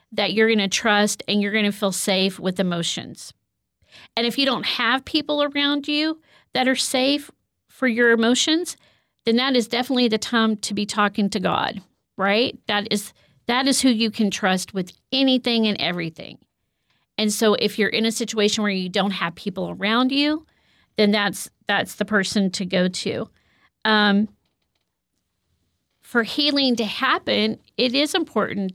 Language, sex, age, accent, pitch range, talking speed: English, female, 40-59, American, 200-235 Hz, 170 wpm